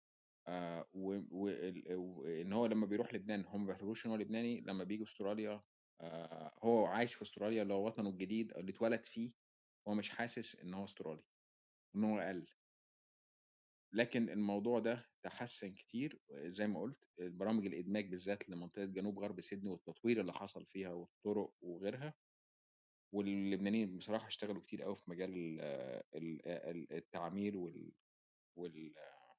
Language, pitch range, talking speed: Arabic, 90-105 Hz, 130 wpm